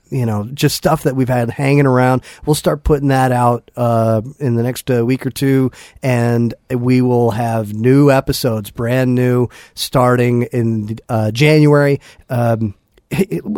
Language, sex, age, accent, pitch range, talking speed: English, male, 40-59, American, 120-145 Hz, 155 wpm